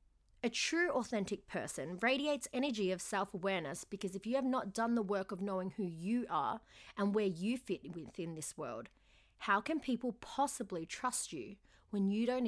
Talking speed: 180 wpm